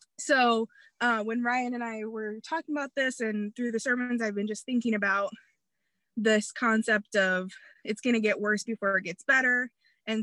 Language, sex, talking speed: English, female, 190 wpm